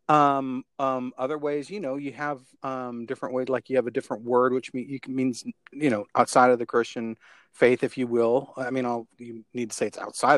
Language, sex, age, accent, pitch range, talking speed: English, male, 40-59, American, 125-150 Hz, 220 wpm